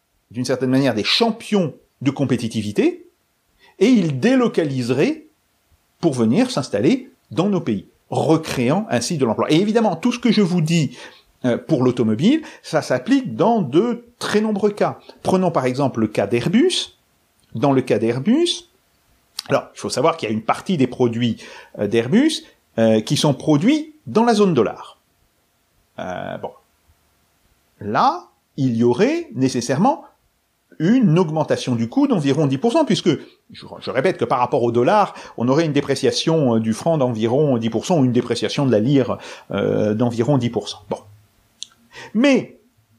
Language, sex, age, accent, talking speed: French, male, 50-69, French, 150 wpm